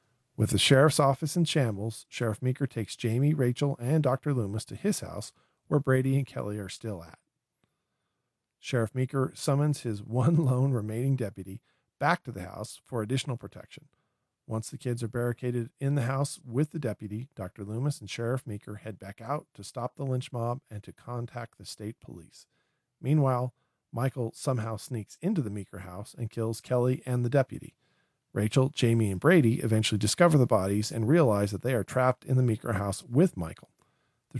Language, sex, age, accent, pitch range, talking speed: English, male, 40-59, American, 110-135 Hz, 180 wpm